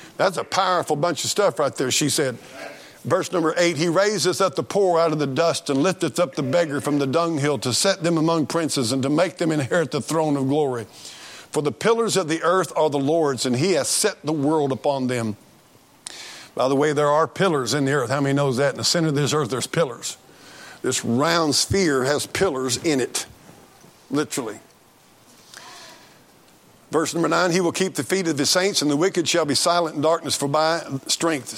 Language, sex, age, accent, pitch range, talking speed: English, male, 50-69, American, 140-170 Hz, 215 wpm